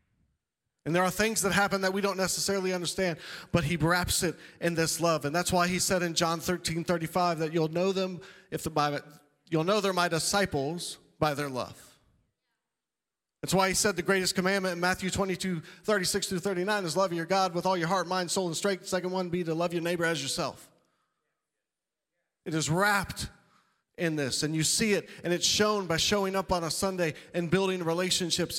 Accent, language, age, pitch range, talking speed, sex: American, English, 40-59, 165-200 Hz, 210 wpm, male